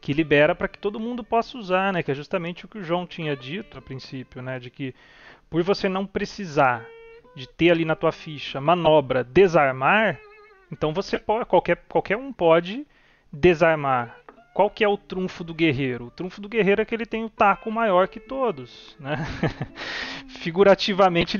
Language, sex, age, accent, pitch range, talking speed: Portuguese, male, 30-49, Brazilian, 145-200 Hz, 180 wpm